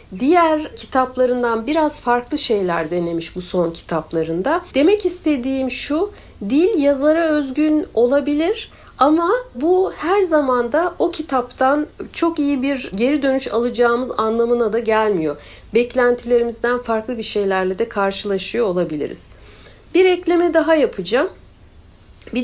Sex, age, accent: female, 60-79, native